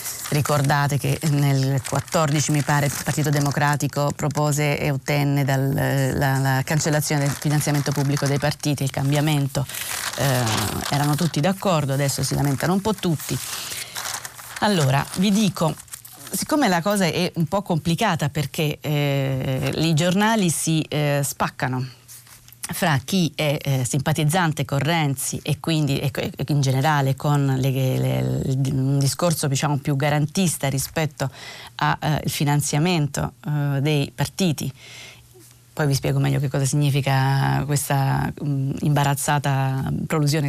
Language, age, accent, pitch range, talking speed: Italian, 30-49, native, 135-155 Hz, 130 wpm